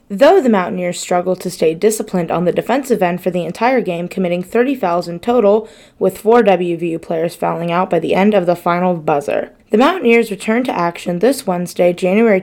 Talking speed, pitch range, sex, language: 200 wpm, 180-230 Hz, female, English